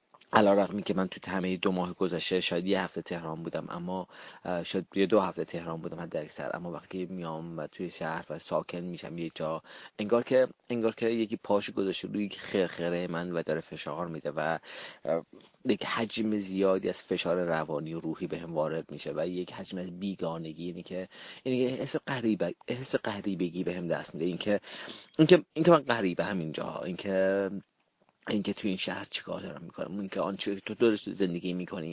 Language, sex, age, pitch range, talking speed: Persian, male, 30-49, 85-105 Hz, 175 wpm